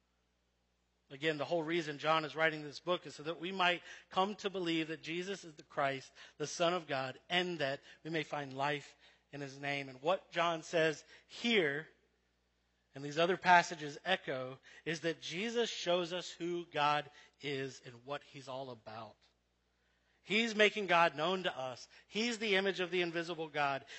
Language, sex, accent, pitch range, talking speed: English, male, American, 140-185 Hz, 180 wpm